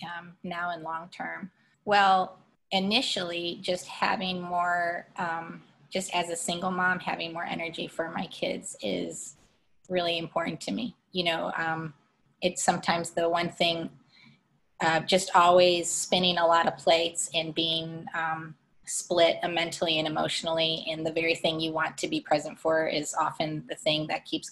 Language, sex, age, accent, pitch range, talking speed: English, female, 20-39, American, 160-180 Hz, 165 wpm